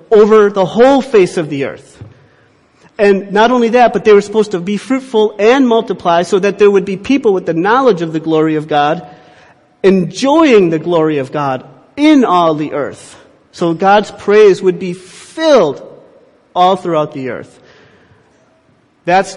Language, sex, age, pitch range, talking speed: English, male, 40-59, 155-195 Hz, 165 wpm